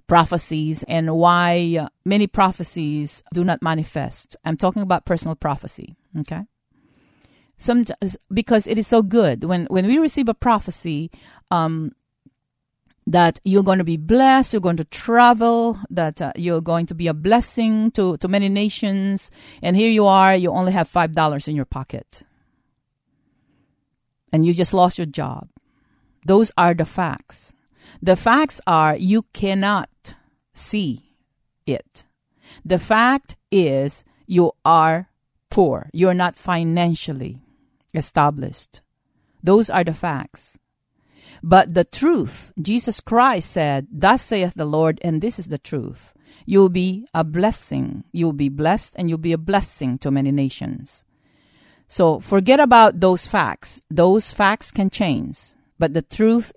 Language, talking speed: English, 145 wpm